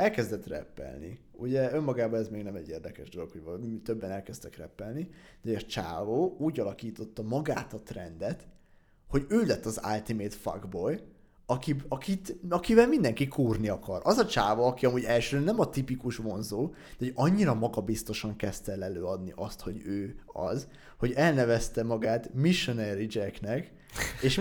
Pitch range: 110-135 Hz